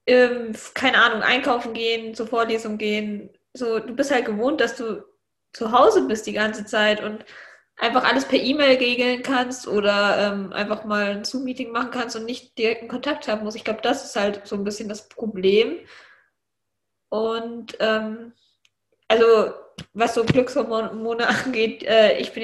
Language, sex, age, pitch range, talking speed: German, female, 10-29, 220-250 Hz, 165 wpm